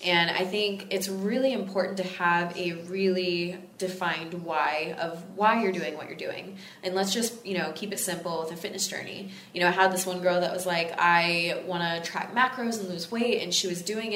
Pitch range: 175-205 Hz